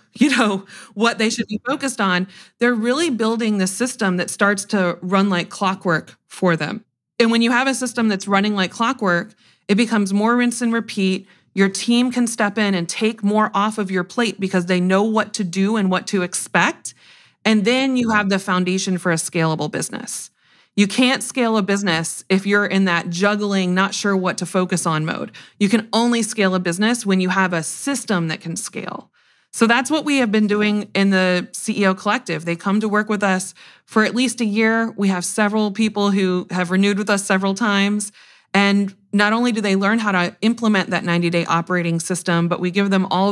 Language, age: English, 30-49